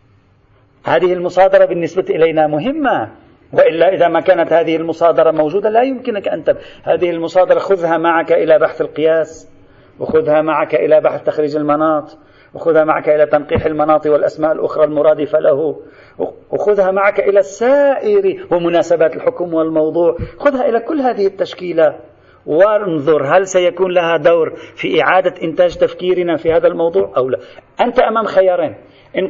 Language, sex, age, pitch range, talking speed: Arabic, male, 40-59, 160-235 Hz, 140 wpm